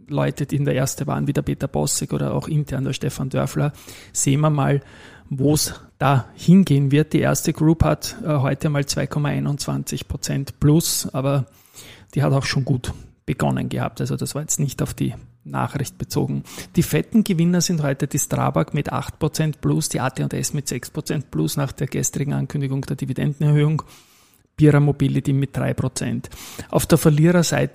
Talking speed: 170 wpm